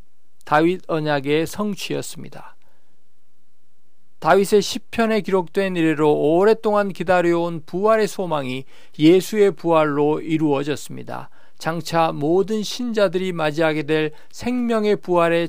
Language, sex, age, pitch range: Korean, male, 40-59, 165-210 Hz